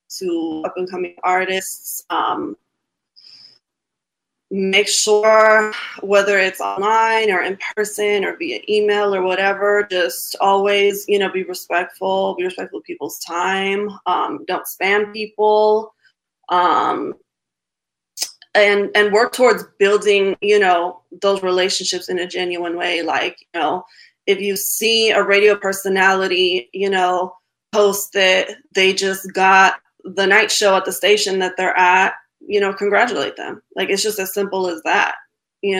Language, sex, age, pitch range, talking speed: English, female, 20-39, 185-215 Hz, 140 wpm